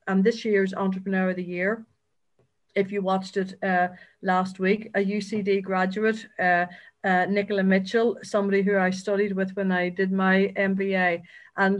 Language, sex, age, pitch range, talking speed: English, female, 50-69, 190-205 Hz, 165 wpm